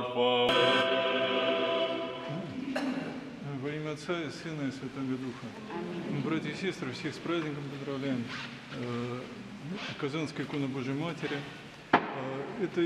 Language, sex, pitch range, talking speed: Russian, male, 135-155 Hz, 95 wpm